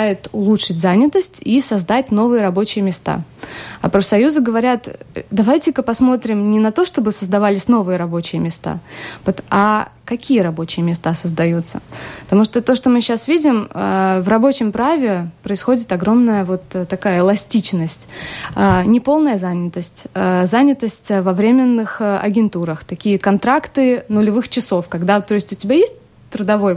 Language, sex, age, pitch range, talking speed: Russian, female, 20-39, 190-245 Hz, 130 wpm